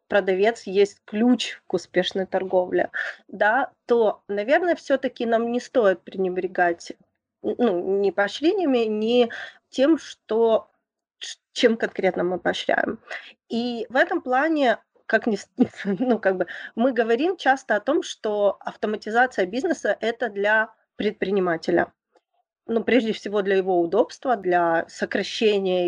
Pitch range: 200-245 Hz